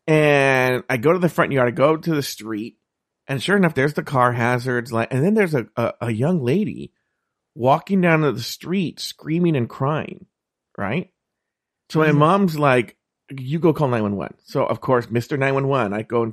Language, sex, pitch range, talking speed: English, male, 125-190 Hz, 185 wpm